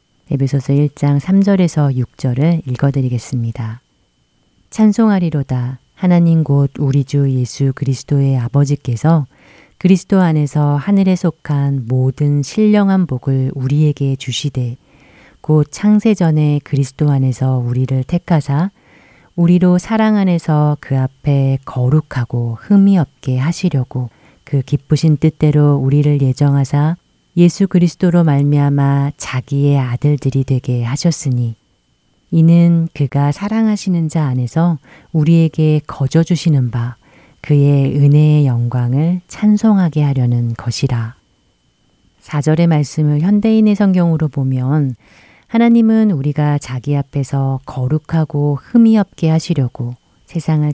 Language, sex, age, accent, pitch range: Korean, female, 40-59, native, 135-170 Hz